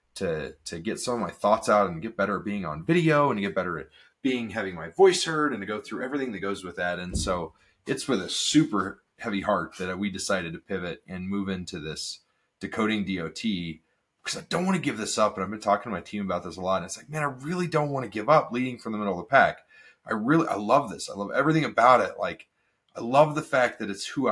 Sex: male